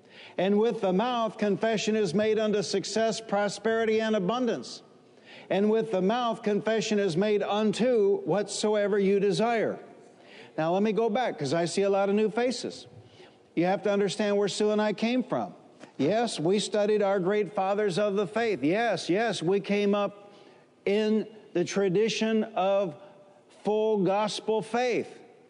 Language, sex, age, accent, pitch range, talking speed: English, male, 60-79, American, 185-215 Hz, 160 wpm